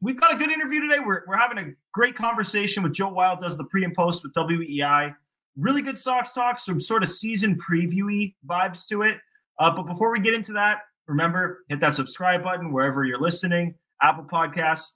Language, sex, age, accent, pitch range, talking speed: English, male, 20-39, American, 145-185 Hz, 205 wpm